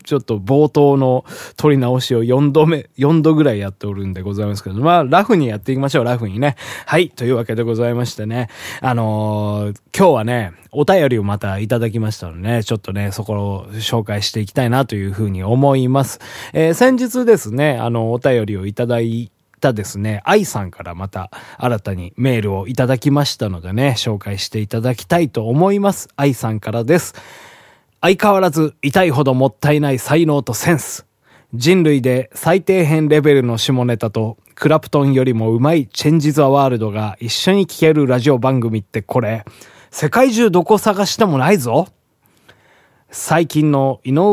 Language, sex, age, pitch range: Japanese, male, 20-39, 115-150 Hz